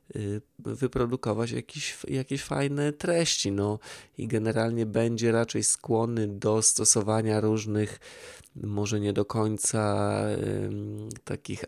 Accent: native